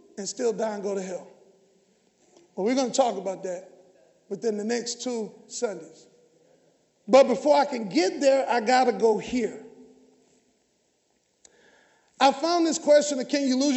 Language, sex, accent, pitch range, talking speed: English, male, American, 225-290 Hz, 165 wpm